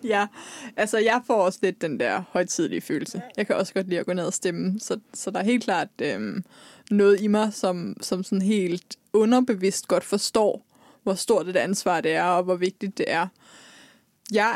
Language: Danish